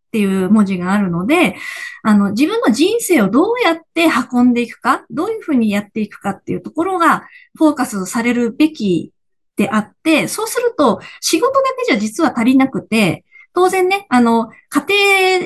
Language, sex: Japanese, female